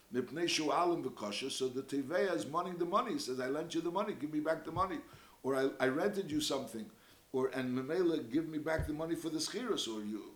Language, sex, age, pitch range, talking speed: English, male, 60-79, 135-205 Hz, 220 wpm